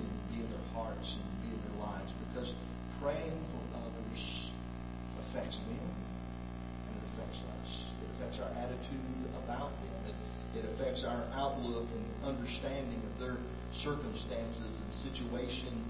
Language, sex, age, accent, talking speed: English, male, 40-59, American, 125 wpm